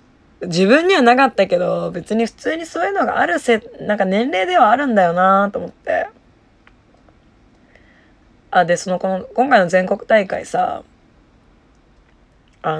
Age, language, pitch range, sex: 20-39, Japanese, 170-255 Hz, female